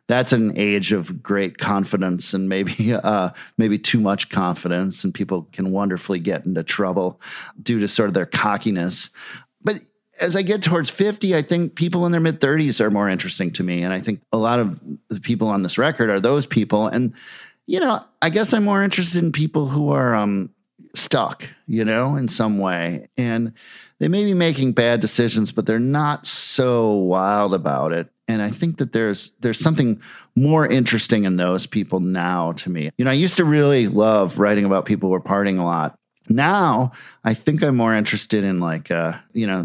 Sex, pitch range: male, 95-130 Hz